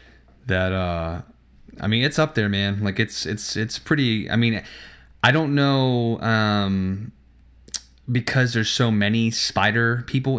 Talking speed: 145 wpm